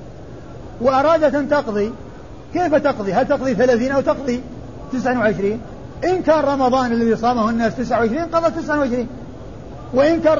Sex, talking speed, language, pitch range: male, 120 wpm, Arabic, 220-290 Hz